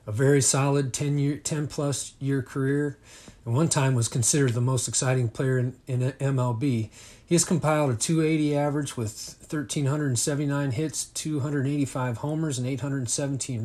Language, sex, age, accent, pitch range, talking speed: English, male, 40-59, American, 115-140 Hz, 165 wpm